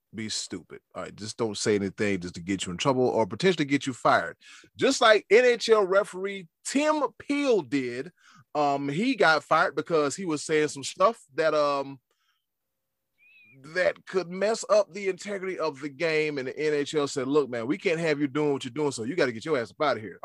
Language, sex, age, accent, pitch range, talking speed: English, male, 30-49, American, 135-190 Hz, 215 wpm